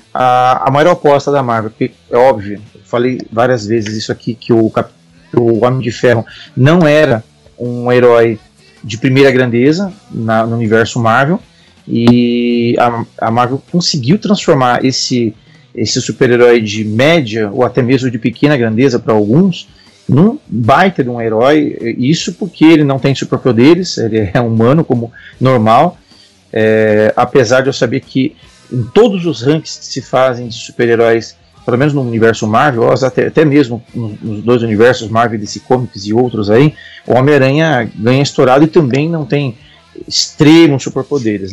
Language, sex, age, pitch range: Portuguese, male, 40-59, 115-145 Hz